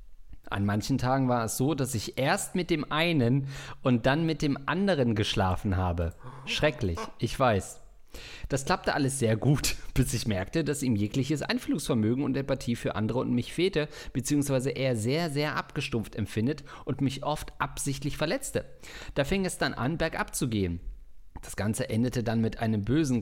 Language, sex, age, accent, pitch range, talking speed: German, male, 50-69, German, 115-150 Hz, 175 wpm